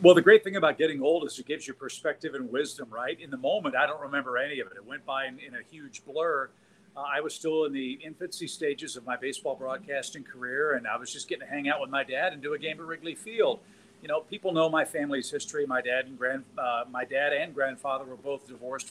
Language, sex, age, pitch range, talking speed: English, male, 50-69, 135-175 Hz, 250 wpm